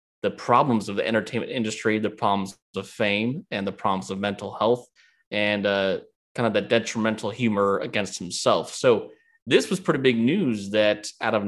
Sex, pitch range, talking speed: male, 105-130 Hz, 180 wpm